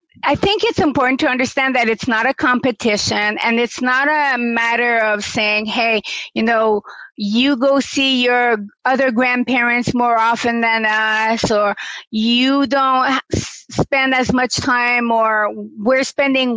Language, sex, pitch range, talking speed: English, female, 215-255 Hz, 150 wpm